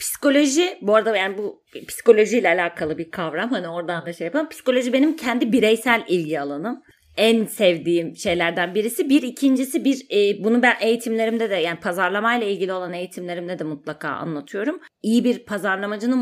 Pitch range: 180-240 Hz